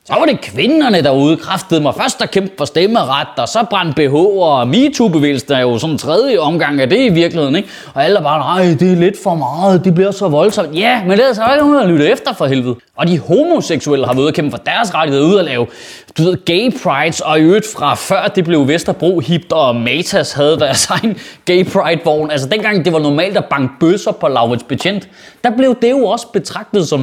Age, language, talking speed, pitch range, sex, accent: 20-39, Danish, 240 wpm, 165-225 Hz, male, native